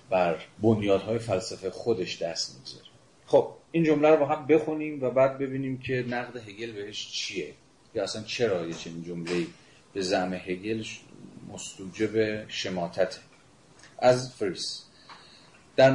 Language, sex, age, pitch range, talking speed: Persian, male, 40-59, 105-130 Hz, 130 wpm